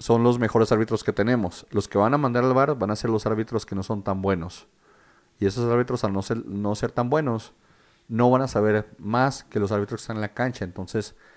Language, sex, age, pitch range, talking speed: Spanish, male, 40-59, 100-115 Hz, 250 wpm